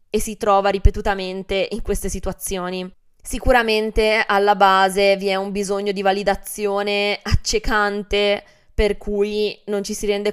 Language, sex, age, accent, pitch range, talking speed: Italian, female, 20-39, native, 200-235 Hz, 130 wpm